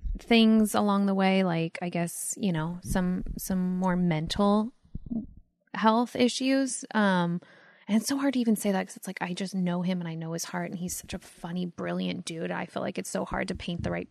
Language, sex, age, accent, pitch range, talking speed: English, female, 20-39, American, 175-205 Hz, 225 wpm